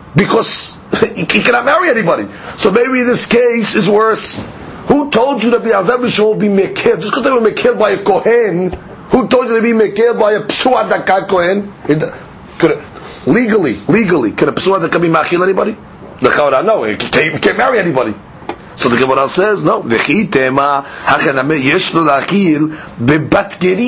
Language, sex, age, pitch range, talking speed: English, male, 40-59, 160-215 Hz, 155 wpm